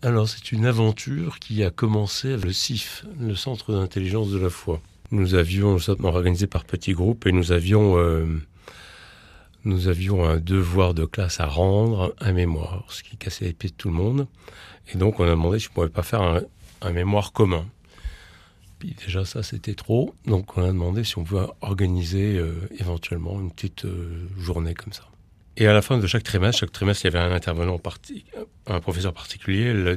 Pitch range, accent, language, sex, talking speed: 90-105 Hz, French, French, male, 200 wpm